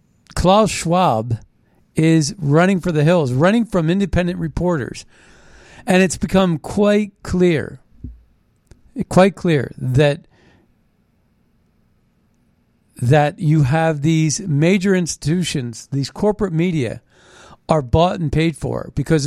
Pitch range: 130-175 Hz